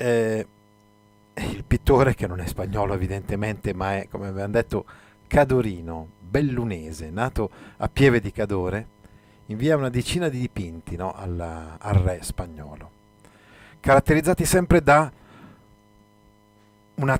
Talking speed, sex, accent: 110 wpm, male, native